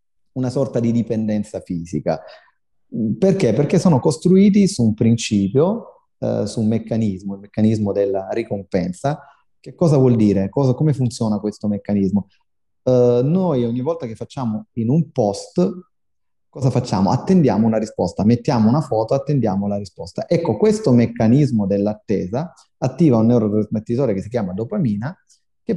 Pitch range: 105-140 Hz